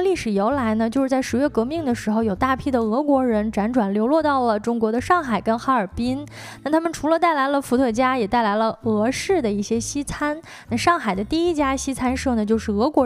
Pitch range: 220-300 Hz